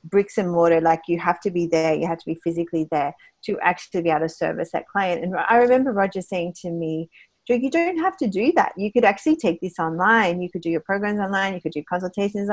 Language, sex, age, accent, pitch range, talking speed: English, female, 40-59, Australian, 175-220 Hz, 250 wpm